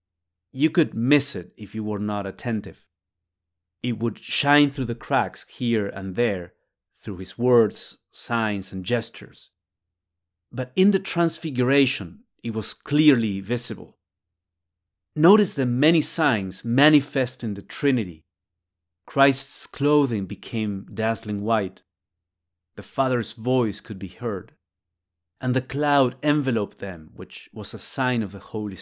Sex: male